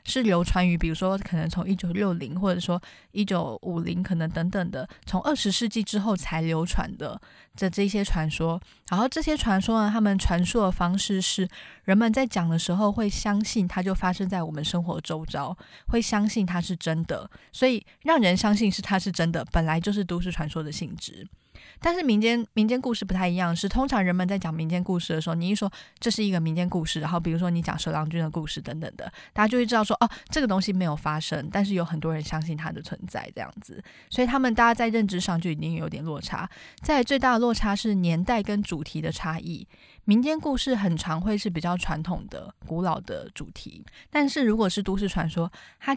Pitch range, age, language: 170-215 Hz, 20-39, Chinese